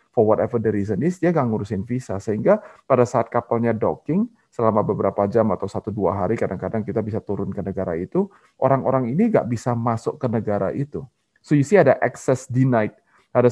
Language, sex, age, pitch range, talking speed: Indonesian, male, 30-49, 105-135 Hz, 180 wpm